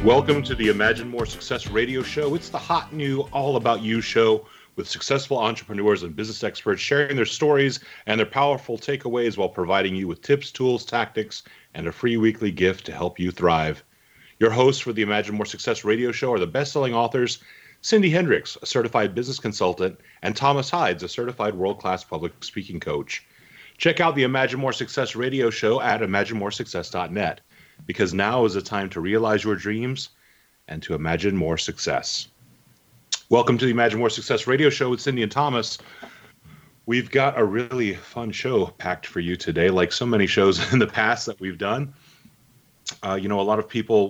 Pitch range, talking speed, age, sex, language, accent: 95-130 Hz, 185 wpm, 30-49, male, English, American